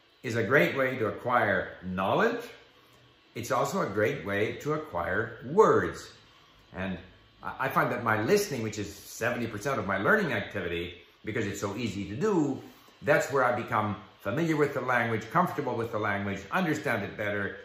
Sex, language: male, English